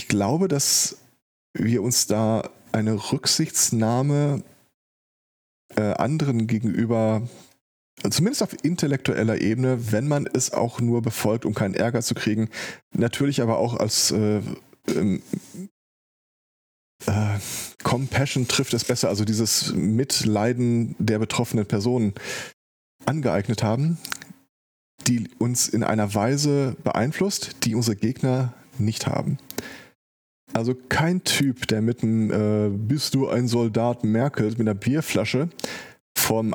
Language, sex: German, male